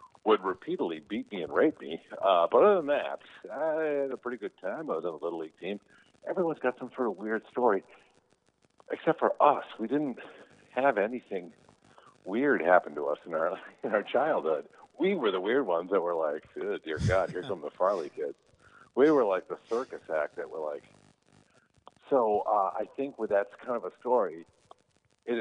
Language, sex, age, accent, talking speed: English, male, 50-69, American, 195 wpm